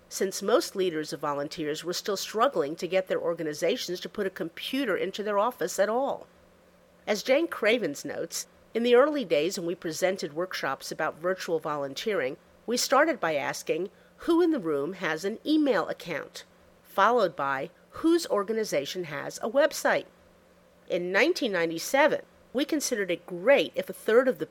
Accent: American